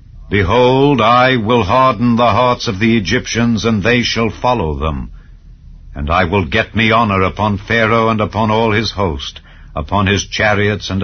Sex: male